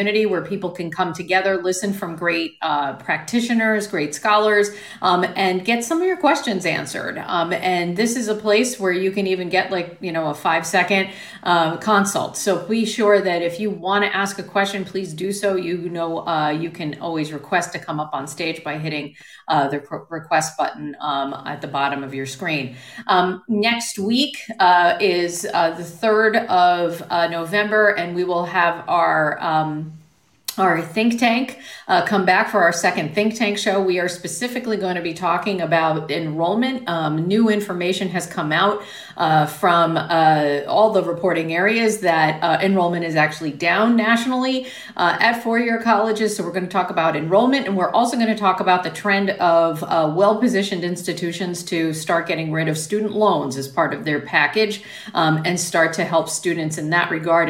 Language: English